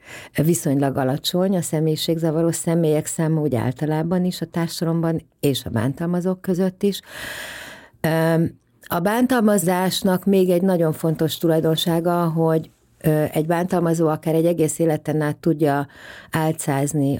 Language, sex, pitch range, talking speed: Hungarian, female, 140-175 Hz, 115 wpm